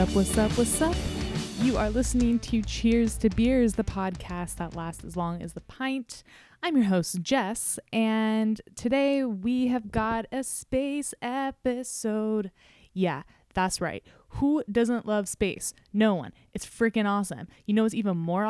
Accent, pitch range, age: American, 185-255 Hz, 10-29